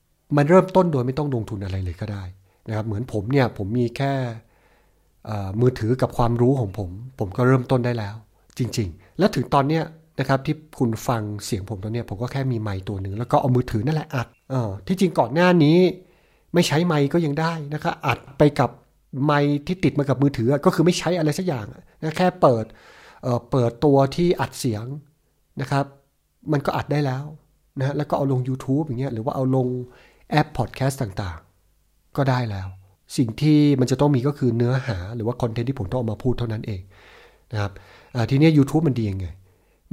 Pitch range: 110-150 Hz